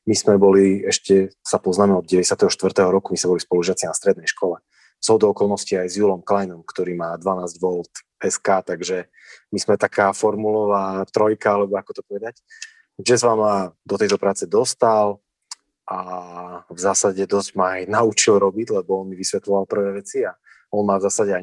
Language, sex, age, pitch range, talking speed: Slovak, male, 20-39, 95-110 Hz, 180 wpm